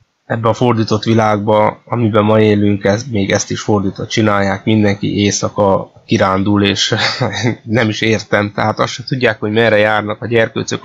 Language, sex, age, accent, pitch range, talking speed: English, male, 20-39, Finnish, 105-120 Hz, 155 wpm